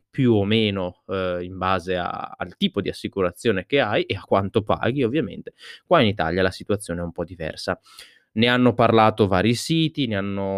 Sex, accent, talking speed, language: male, native, 185 wpm, Italian